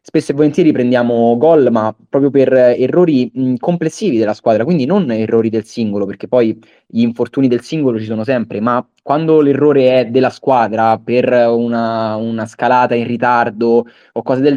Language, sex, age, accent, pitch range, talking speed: Italian, male, 20-39, native, 110-130 Hz, 170 wpm